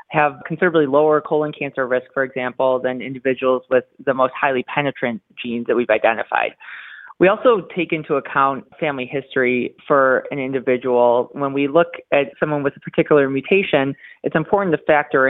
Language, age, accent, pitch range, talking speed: English, 30-49, American, 130-155 Hz, 165 wpm